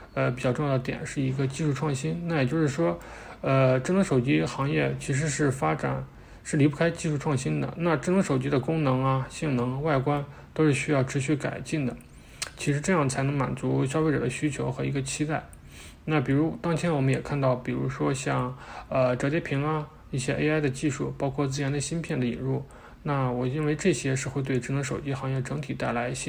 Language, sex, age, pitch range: English, male, 20-39, 130-155 Hz